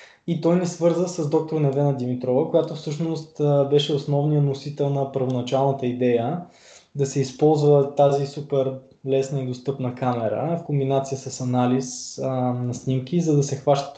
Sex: male